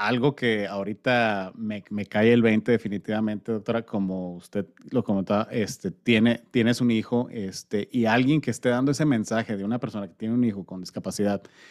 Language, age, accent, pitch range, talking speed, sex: English, 30-49, Mexican, 110-135 Hz, 185 wpm, male